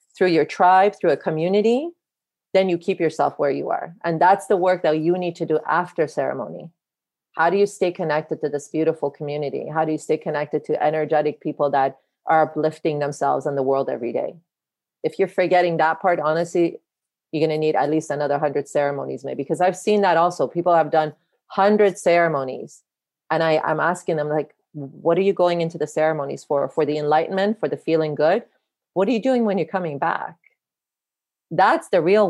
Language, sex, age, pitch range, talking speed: English, female, 30-49, 150-180 Hz, 200 wpm